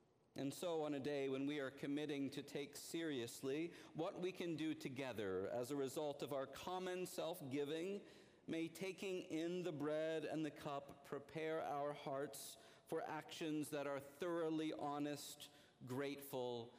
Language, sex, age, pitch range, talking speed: English, male, 50-69, 135-165 Hz, 150 wpm